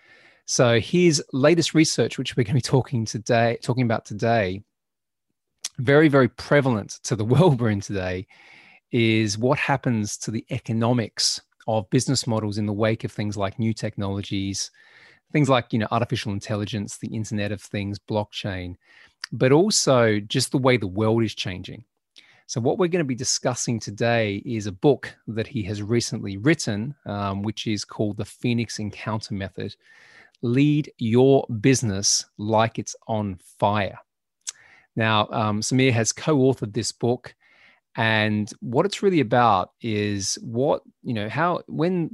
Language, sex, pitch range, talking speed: English, male, 105-130 Hz, 155 wpm